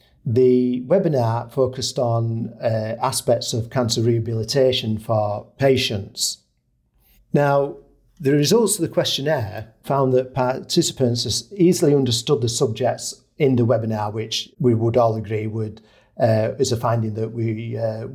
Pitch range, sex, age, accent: 115-135 Hz, male, 50-69, British